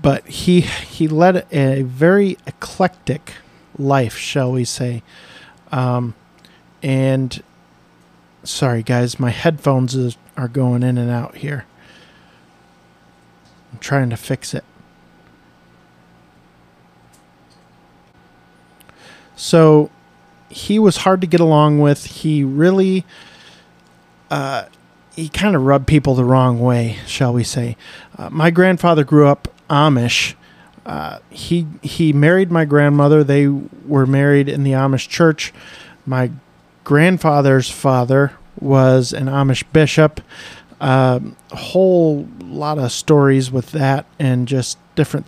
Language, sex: English, male